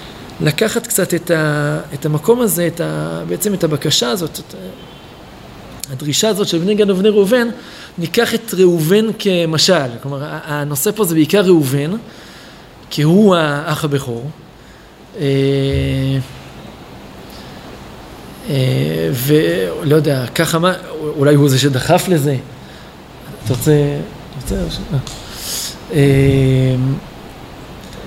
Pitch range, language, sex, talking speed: 145-195 Hz, Hebrew, male, 100 wpm